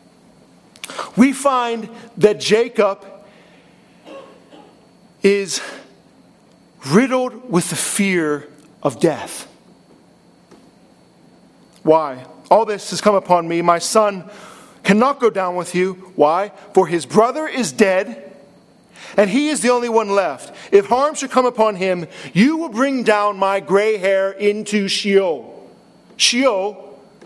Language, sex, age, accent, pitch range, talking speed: English, male, 50-69, American, 170-225 Hz, 120 wpm